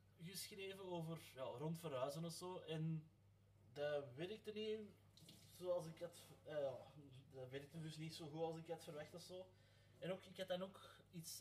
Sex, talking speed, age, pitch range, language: male, 180 wpm, 20-39, 115-180 Hz, Dutch